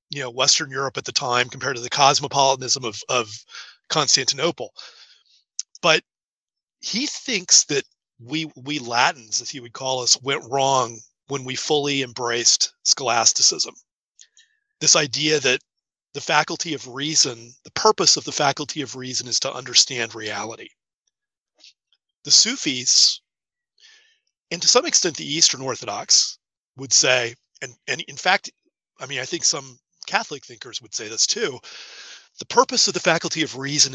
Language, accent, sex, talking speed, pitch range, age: English, American, male, 150 wpm, 125-165 Hz, 30-49